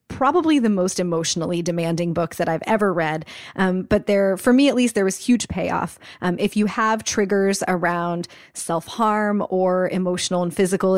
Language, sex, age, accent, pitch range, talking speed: English, female, 20-39, American, 180-220 Hz, 175 wpm